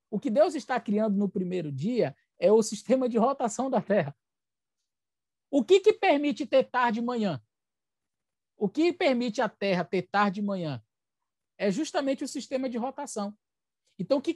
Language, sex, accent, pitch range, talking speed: Portuguese, male, Brazilian, 180-245 Hz, 170 wpm